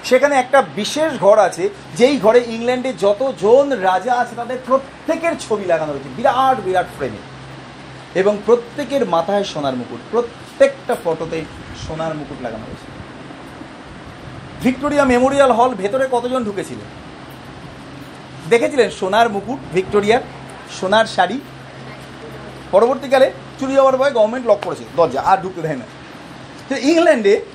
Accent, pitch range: native, 185-265 Hz